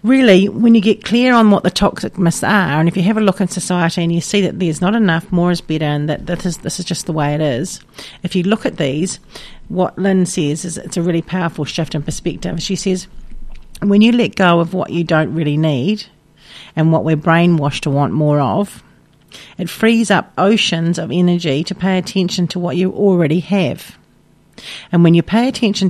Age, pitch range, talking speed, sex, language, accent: 40-59, 165-200 Hz, 220 wpm, female, English, Australian